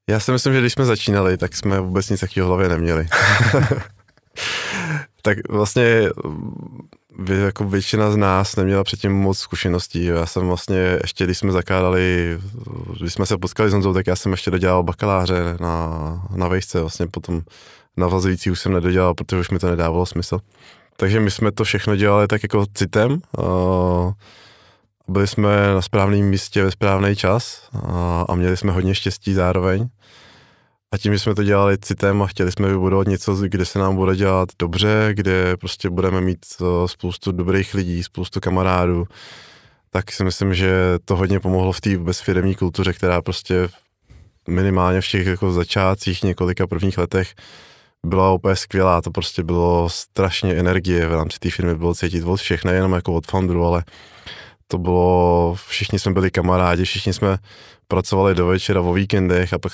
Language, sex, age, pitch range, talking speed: Czech, male, 20-39, 90-100 Hz, 165 wpm